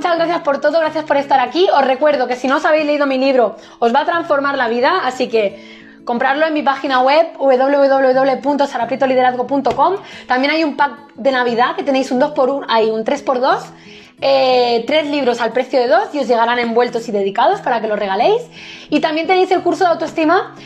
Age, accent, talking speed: 20-39, Spanish, 205 wpm